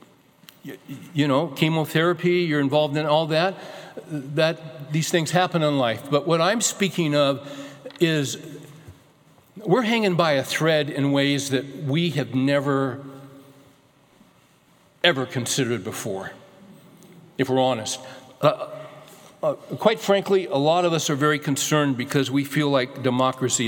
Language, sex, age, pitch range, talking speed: English, male, 60-79, 135-160 Hz, 135 wpm